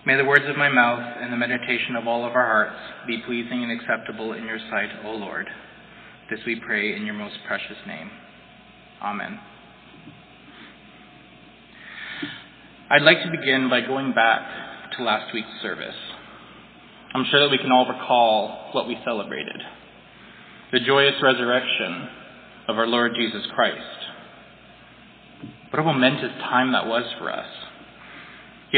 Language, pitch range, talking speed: English, 120-155 Hz, 145 wpm